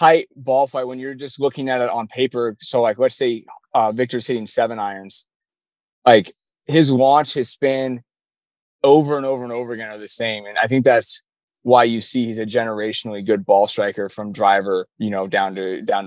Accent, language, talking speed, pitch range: American, English, 200 wpm, 115-140 Hz